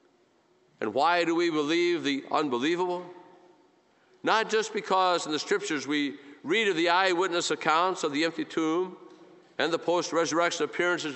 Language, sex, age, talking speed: English, male, 50-69, 145 wpm